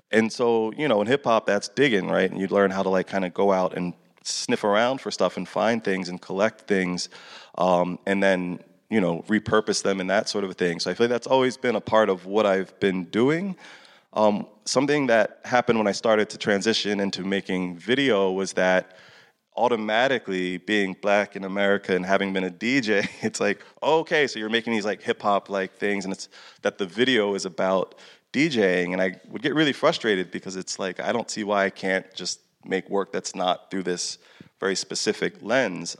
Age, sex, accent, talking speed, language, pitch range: 20-39, male, American, 210 wpm, English, 90-110 Hz